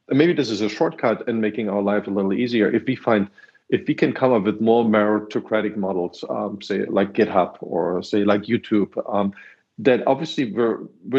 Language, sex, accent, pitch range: English, male, German, 100-115 Hz